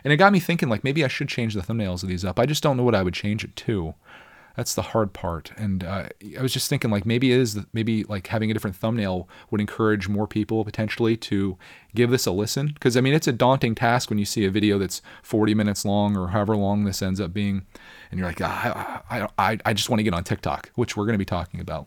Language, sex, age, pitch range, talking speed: English, male, 30-49, 95-130 Hz, 270 wpm